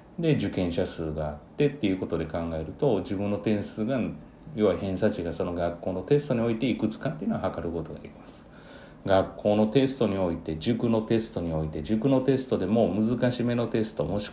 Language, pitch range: Japanese, 85-110 Hz